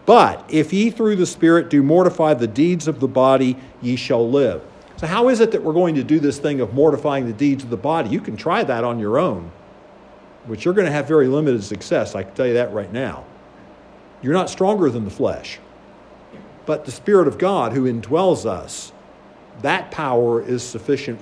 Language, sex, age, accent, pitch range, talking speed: English, male, 50-69, American, 130-170 Hz, 210 wpm